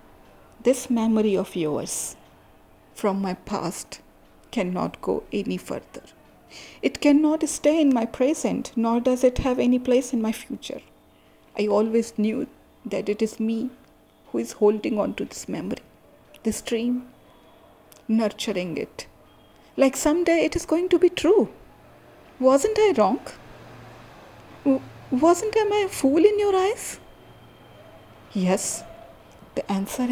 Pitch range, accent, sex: 225-305 Hz, native, female